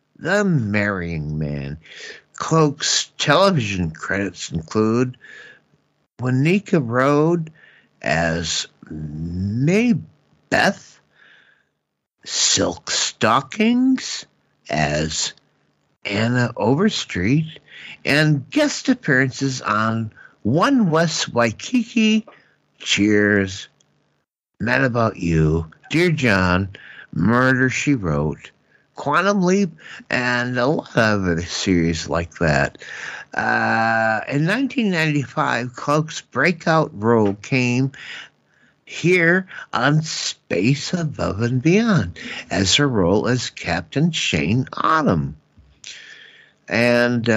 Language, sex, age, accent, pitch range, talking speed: English, male, 60-79, American, 95-155 Hz, 80 wpm